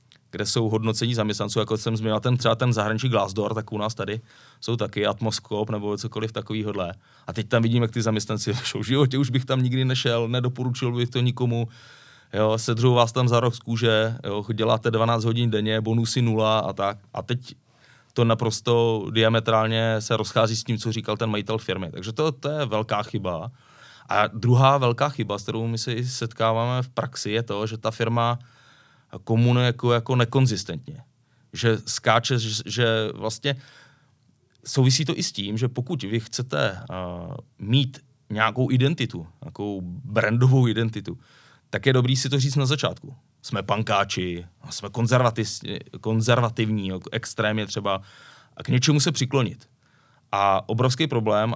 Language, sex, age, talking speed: Czech, male, 20-39, 160 wpm